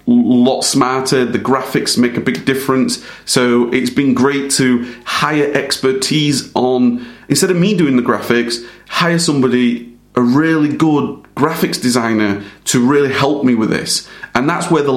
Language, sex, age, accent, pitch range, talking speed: English, male, 30-49, British, 120-145 Hz, 155 wpm